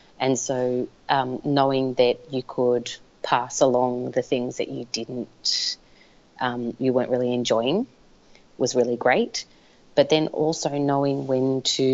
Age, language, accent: 30-49, English, Australian